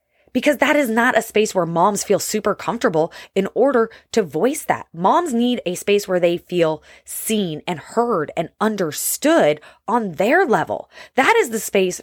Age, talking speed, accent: 20-39, 175 wpm, American